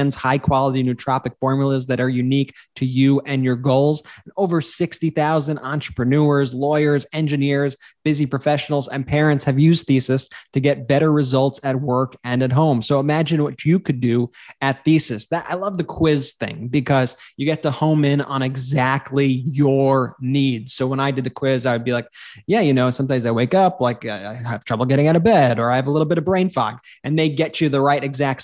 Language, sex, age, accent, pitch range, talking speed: English, male, 20-39, American, 130-155 Hz, 205 wpm